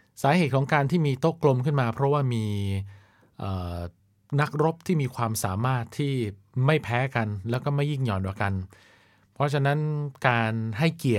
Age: 20-39